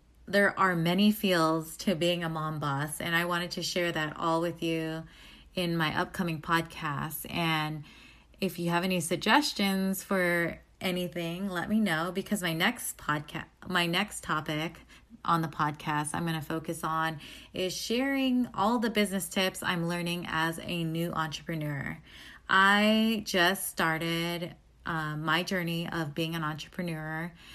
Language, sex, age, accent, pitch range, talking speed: English, female, 20-39, American, 160-195 Hz, 155 wpm